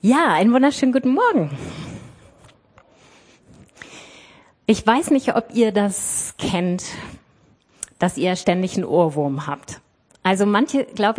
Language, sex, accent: German, female, German